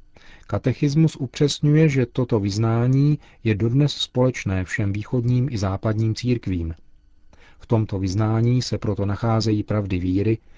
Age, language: 40-59, Czech